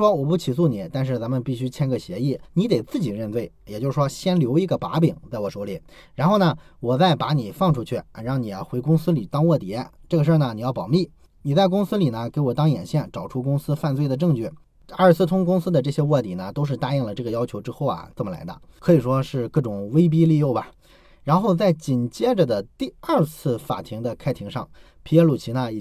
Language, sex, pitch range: Chinese, male, 125-165 Hz